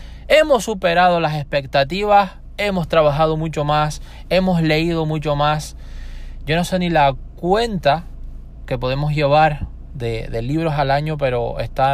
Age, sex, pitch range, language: 20-39, male, 115-150 Hz, Spanish